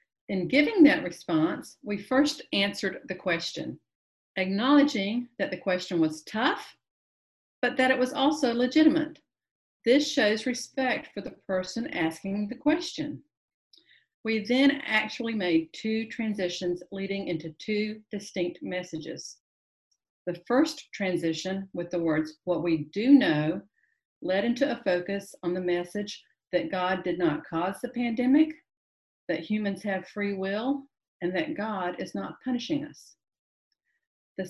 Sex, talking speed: female, 135 wpm